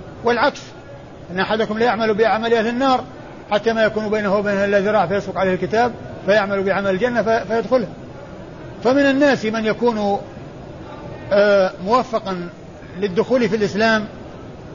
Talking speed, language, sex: 120 wpm, Arabic, male